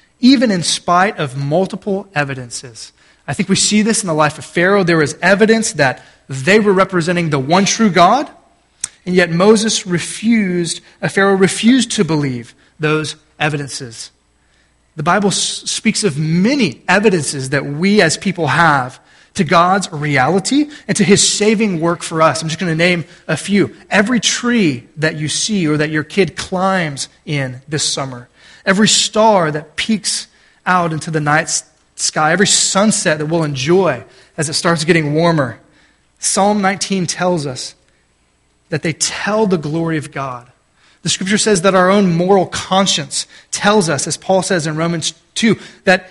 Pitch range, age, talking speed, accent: 155-200 Hz, 30-49, 165 wpm, American